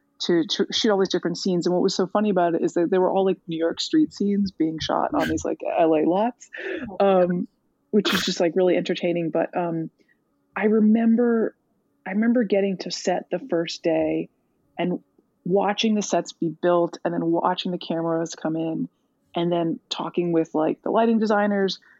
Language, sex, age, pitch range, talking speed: English, female, 20-39, 165-210 Hz, 195 wpm